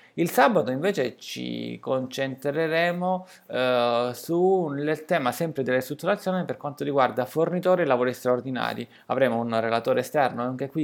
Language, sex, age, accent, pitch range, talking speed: Italian, male, 20-39, native, 125-170 Hz, 135 wpm